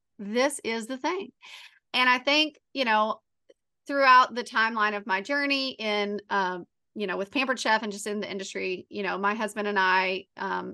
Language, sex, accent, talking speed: English, female, American, 190 wpm